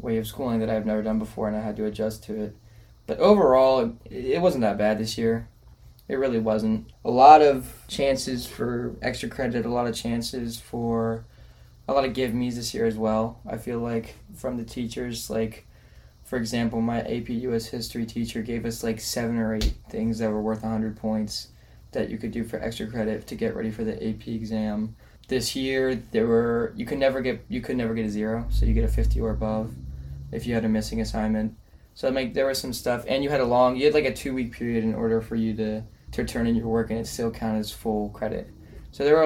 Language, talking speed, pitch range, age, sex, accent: English, 230 wpm, 110-125 Hz, 10-29, male, American